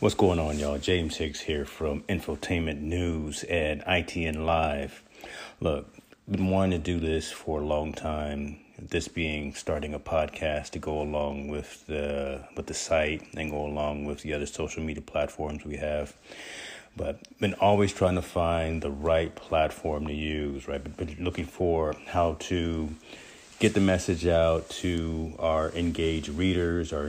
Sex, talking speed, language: male, 160 wpm, English